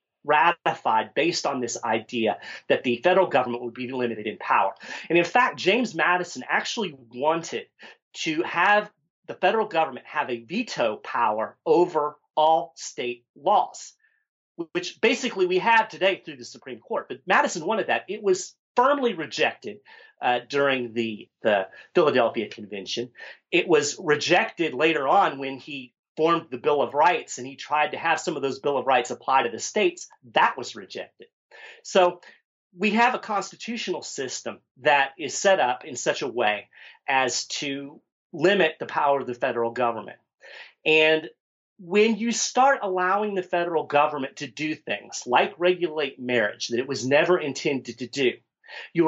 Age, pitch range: 40-59, 135-210 Hz